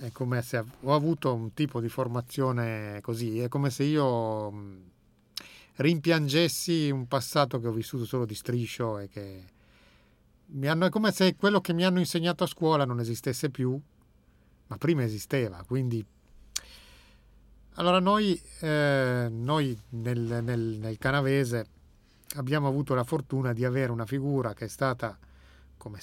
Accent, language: native, Italian